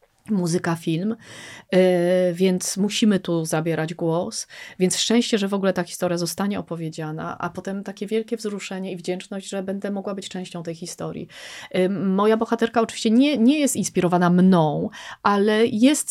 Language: Polish